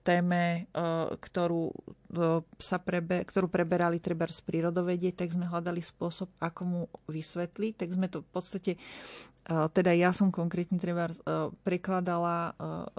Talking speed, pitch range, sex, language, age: 120 wpm, 165-185 Hz, female, Slovak, 40-59